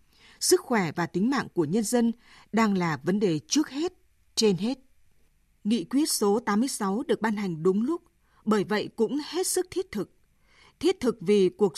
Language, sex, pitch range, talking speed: Vietnamese, female, 195-260 Hz, 185 wpm